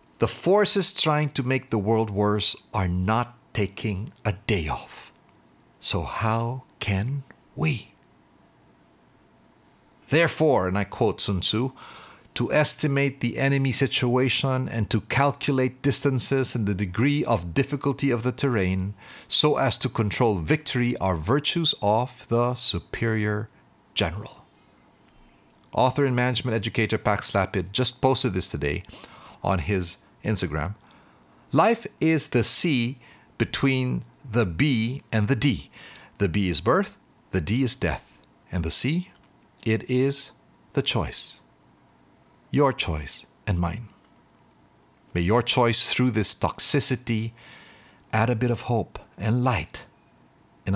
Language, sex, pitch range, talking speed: English, male, 95-130 Hz, 130 wpm